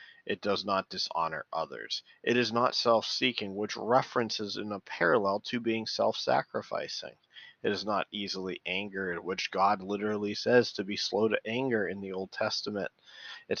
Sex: male